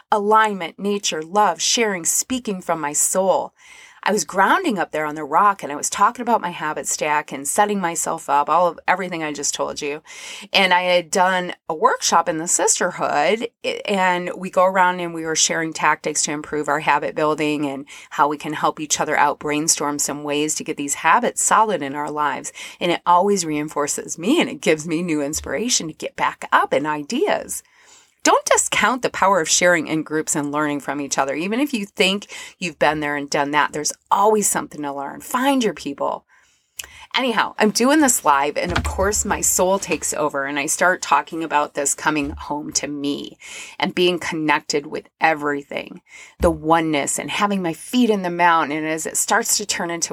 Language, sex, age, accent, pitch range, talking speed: English, female, 30-49, American, 150-200 Hz, 200 wpm